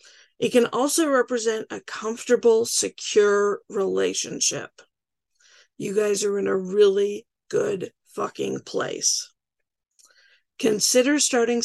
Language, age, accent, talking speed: English, 50-69, American, 100 wpm